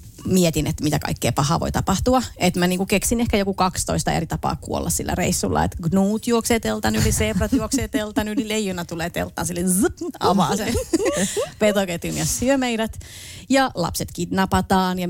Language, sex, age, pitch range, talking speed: Finnish, female, 30-49, 170-220 Hz, 160 wpm